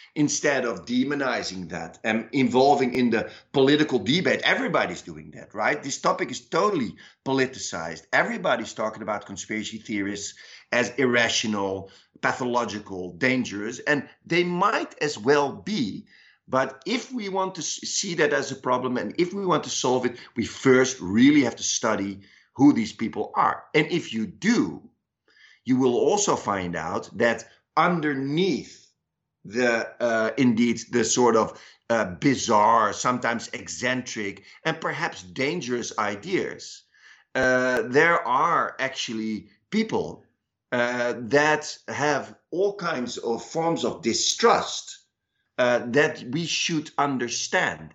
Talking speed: 130 wpm